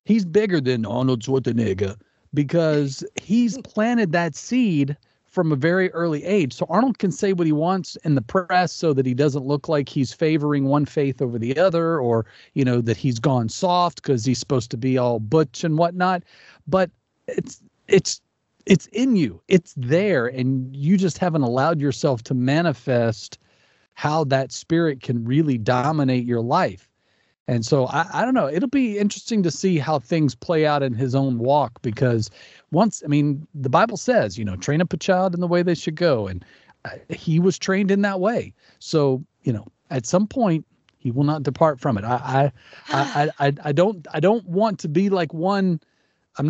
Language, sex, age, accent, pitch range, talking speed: English, male, 40-59, American, 135-180 Hz, 185 wpm